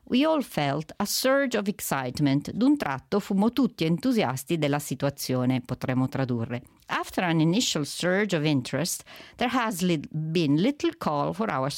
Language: Italian